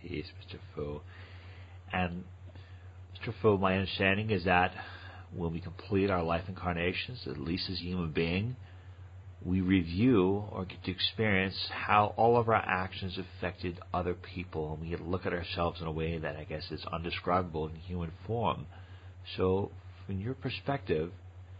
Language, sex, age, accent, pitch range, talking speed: English, male, 40-59, American, 90-95 Hz, 160 wpm